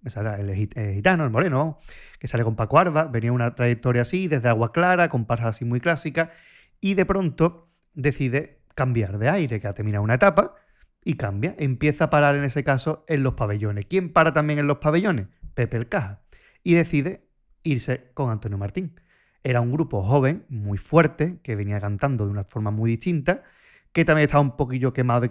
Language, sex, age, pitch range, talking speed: Spanish, male, 30-49, 115-150 Hz, 195 wpm